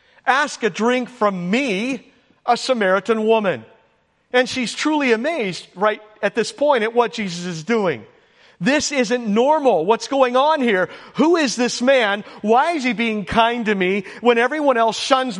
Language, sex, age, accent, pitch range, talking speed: English, male, 50-69, American, 175-240 Hz, 170 wpm